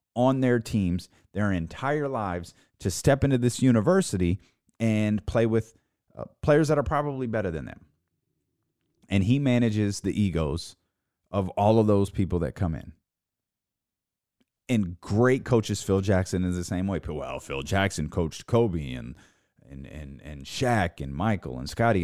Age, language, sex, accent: 30-49, English, male, American